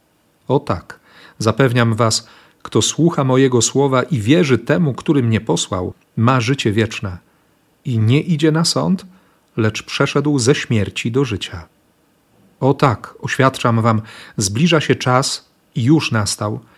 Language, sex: Polish, male